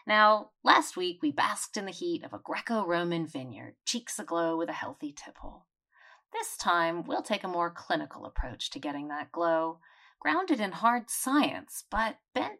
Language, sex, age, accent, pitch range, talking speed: English, female, 30-49, American, 170-280 Hz, 170 wpm